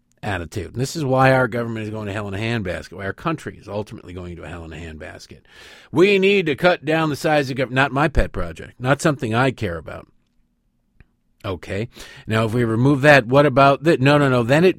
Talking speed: 225 wpm